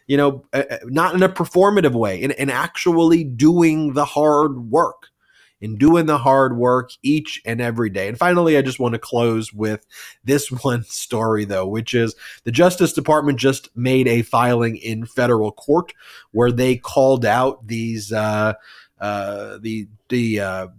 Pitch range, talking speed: 110-135 Hz, 165 wpm